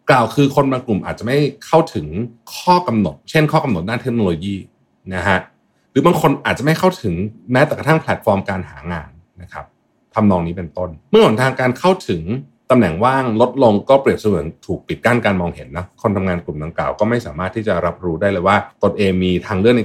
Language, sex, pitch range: Thai, male, 90-130 Hz